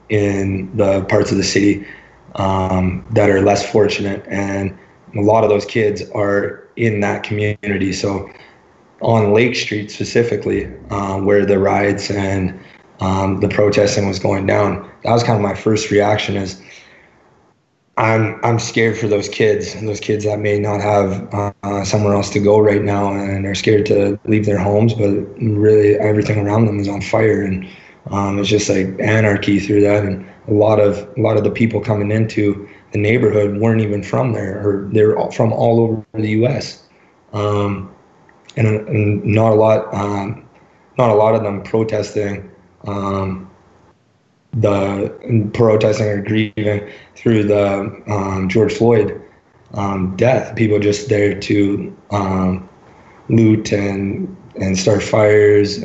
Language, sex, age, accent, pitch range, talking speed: English, male, 20-39, American, 100-105 Hz, 160 wpm